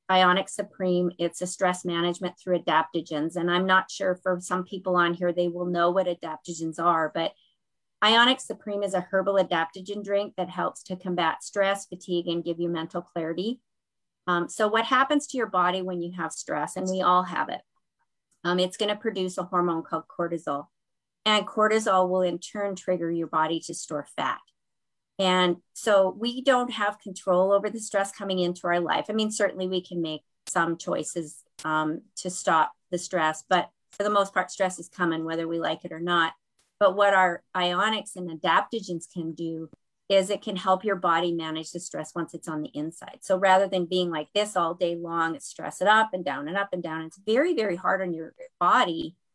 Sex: female